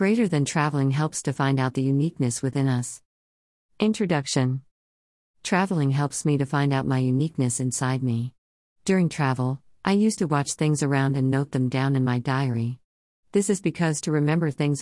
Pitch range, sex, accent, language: 130-155 Hz, female, American, Tamil